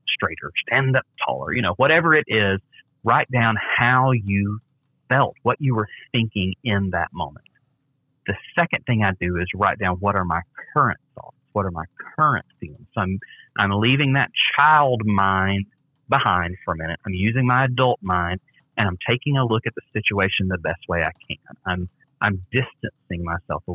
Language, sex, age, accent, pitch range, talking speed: English, male, 30-49, American, 95-125 Hz, 185 wpm